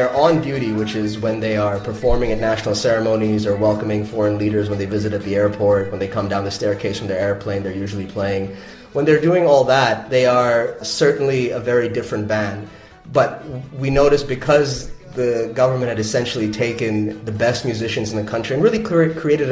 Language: English